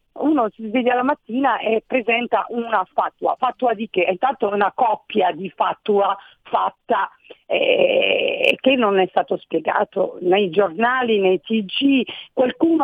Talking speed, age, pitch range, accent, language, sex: 135 wpm, 50-69, 220-265 Hz, native, Italian, female